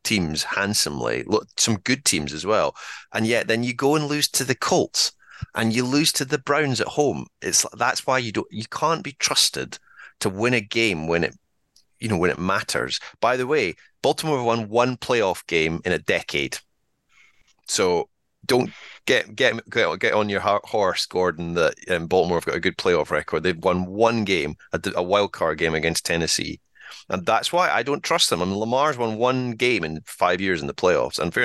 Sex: male